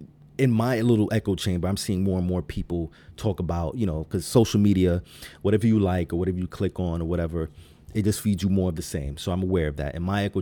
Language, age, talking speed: English, 30-49, 255 wpm